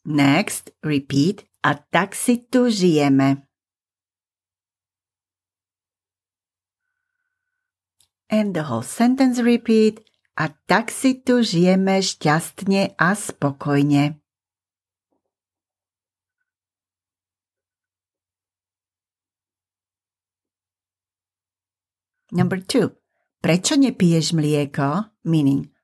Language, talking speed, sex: English, 50 wpm, female